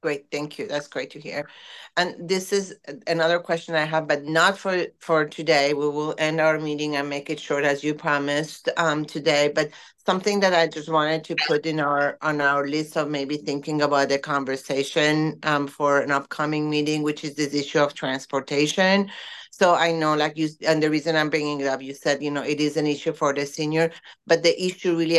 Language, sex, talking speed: English, female, 215 wpm